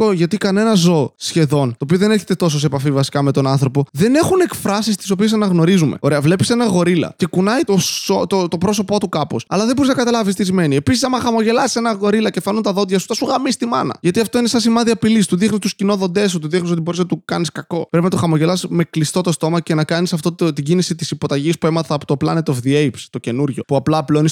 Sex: male